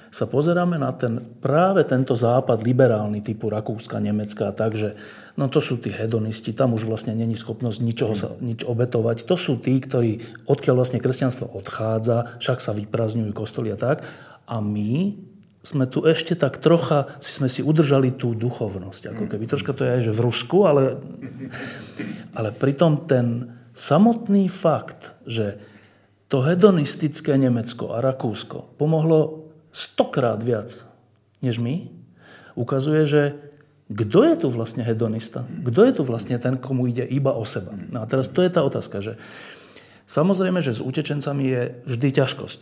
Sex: male